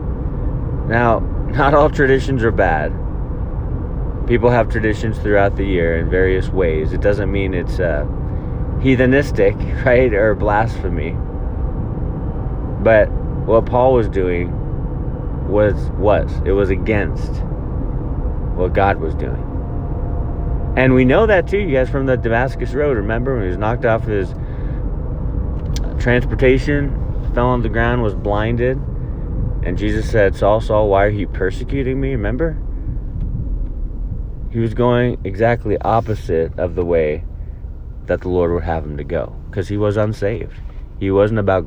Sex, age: male, 30-49